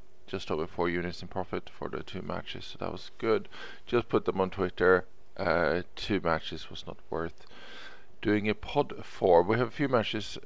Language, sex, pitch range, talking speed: English, male, 90-100 Hz, 195 wpm